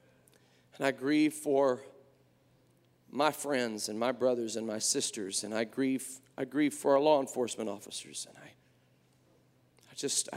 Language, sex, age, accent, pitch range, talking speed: English, male, 40-59, American, 140-190 Hz, 150 wpm